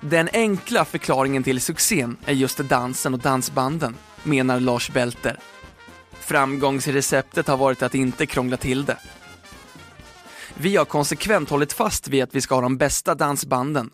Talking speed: 145 wpm